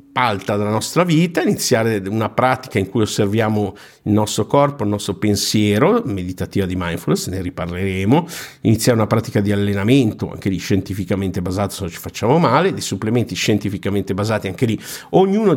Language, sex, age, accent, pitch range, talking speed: Italian, male, 50-69, native, 100-130 Hz, 160 wpm